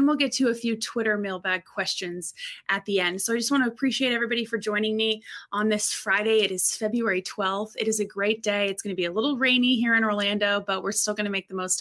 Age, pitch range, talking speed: 20-39, 190-230 Hz, 265 wpm